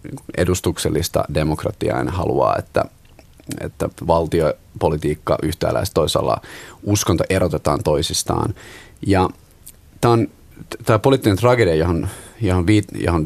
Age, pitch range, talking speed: 30-49, 85-105 Hz, 85 wpm